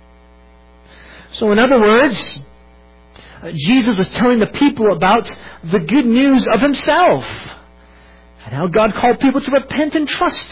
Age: 50-69